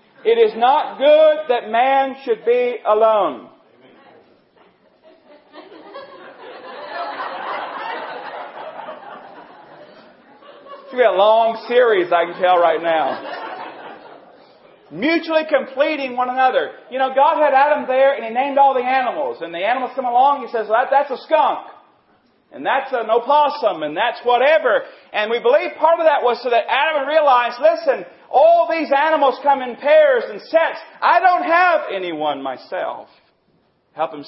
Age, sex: 40-59, male